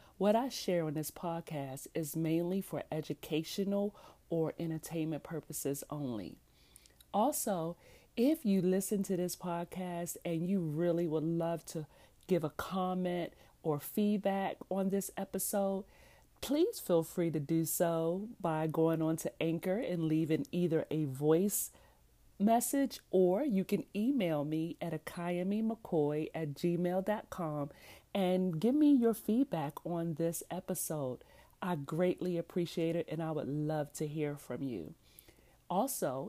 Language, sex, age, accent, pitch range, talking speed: English, female, 40-59, American, 160-195 Hz, 135 wpm